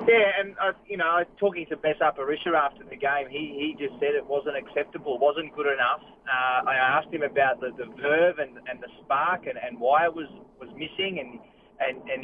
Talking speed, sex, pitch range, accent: 210 wpm, male, 145-200 Hz, Australian